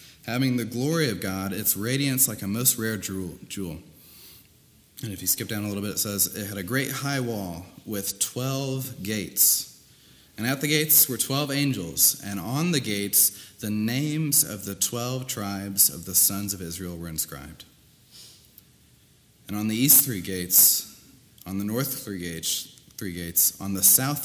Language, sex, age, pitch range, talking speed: English, male, 30-49, 100-130 Hz, 175 wpm